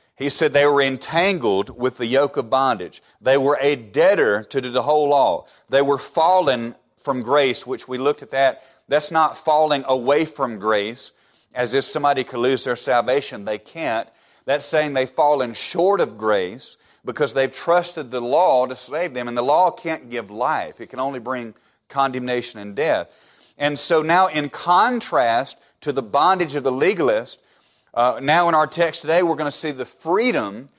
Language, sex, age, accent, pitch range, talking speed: English, male, 40-59, American, 125-155 Hz, 185 wpm